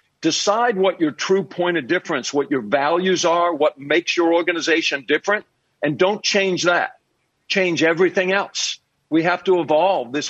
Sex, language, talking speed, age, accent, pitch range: male, English, 165 wpm, 50-69, American, 145-185 Hz